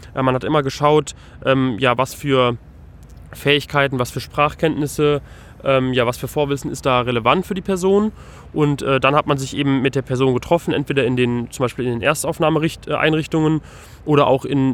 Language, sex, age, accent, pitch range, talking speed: German, male, 20-39, German, 130-155 Hz, 165 wpm